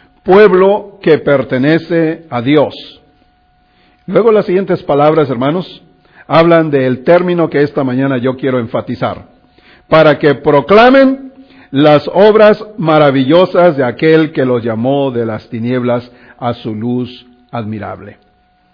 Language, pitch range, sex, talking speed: English, 135-190 Hz, male, 120 wpm